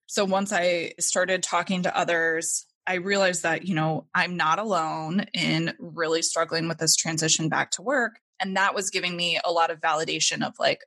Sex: female